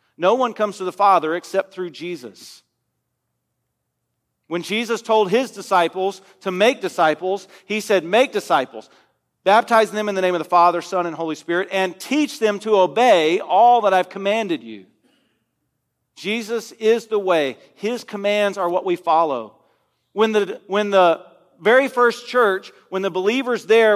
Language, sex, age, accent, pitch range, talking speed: English, male, 40-59, American, 185-230 Hz, 160 wpm